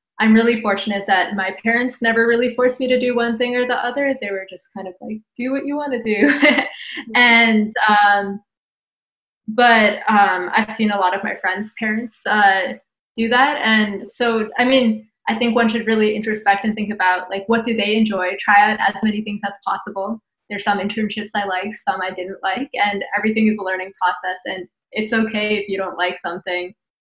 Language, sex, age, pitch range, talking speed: English, female, 20-39, 190-230 Hz, 205 wpm